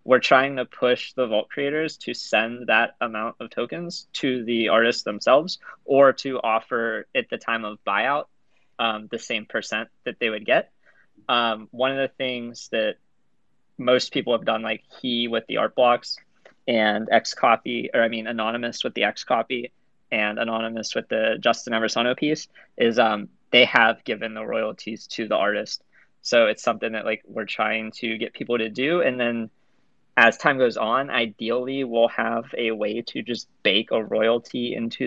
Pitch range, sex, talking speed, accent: 115-125 Hz, male, 180 wpm, American